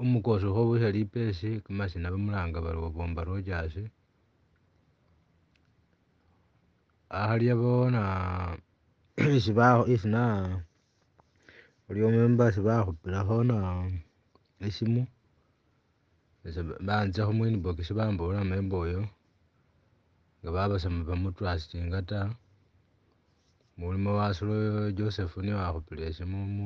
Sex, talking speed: male, 60 wpm